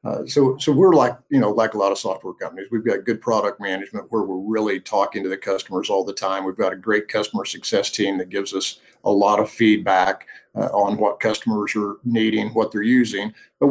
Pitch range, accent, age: 100-135 Hz, American, 50-69